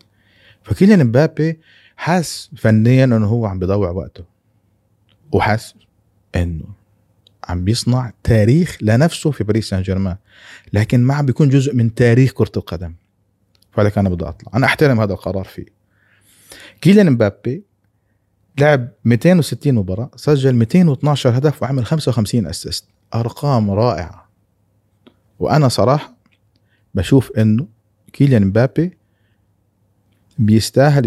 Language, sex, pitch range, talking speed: Arabic, male, 100-125 Hz, 110 wpm